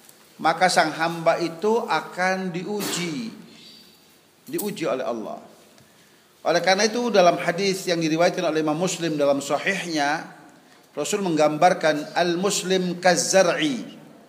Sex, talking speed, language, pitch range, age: male, 105 wpm, Indonesian, 175-235 Hz, 40-59